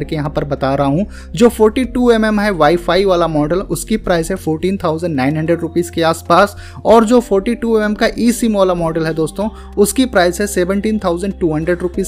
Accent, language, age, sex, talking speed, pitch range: native, Hindi, 20-39, male, 80 wpm, 155-195 Hz